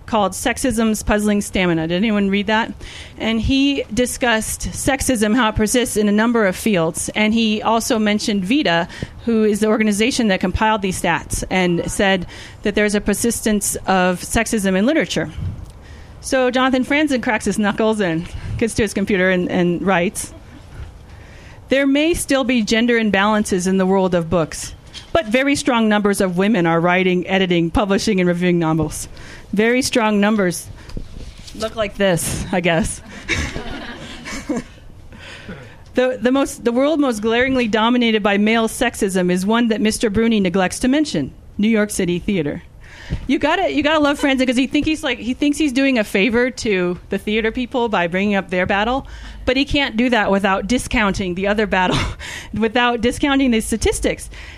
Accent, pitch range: American, 190-245 Hz